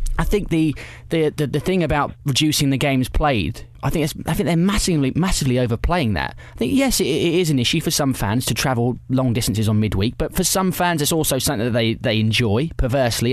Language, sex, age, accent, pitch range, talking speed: English, male, 20-39, British, 115-150 Hz, 230 wpm